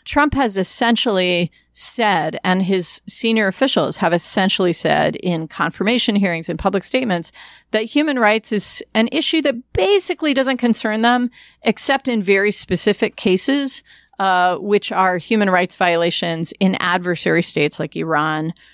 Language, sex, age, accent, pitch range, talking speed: English, female, 40-59, American, 180-240 Hz, 140 wpm